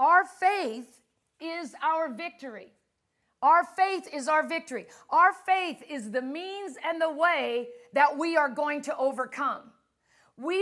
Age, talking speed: 50-69, 140 wpm